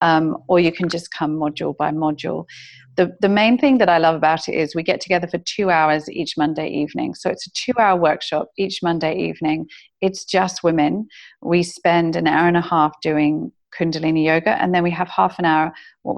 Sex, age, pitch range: female, 40-59, 155-180 Hz